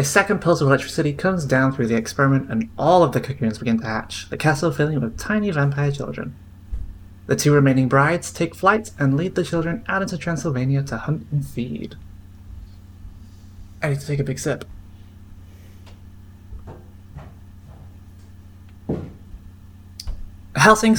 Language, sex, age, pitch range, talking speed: English, male, 20-39, 95-145 Hz, 145 wpm